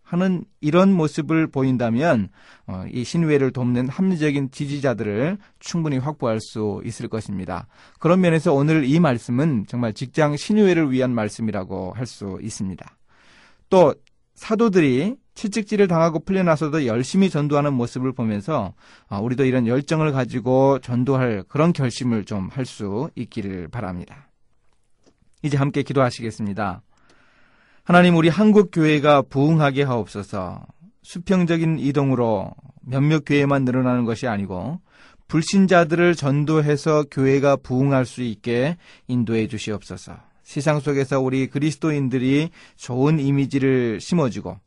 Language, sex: Korean, male